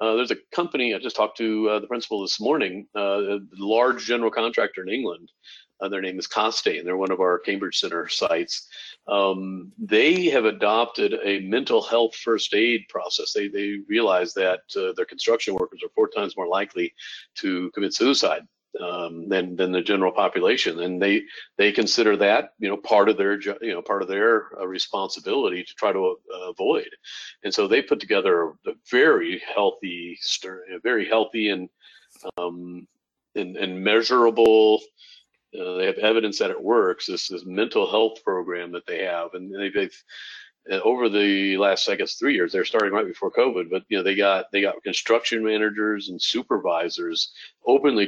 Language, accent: English, American